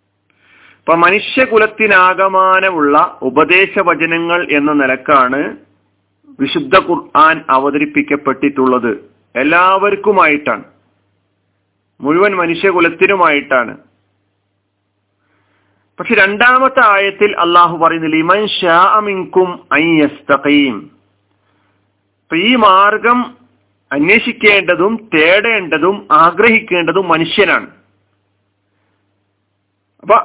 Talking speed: 50 wpm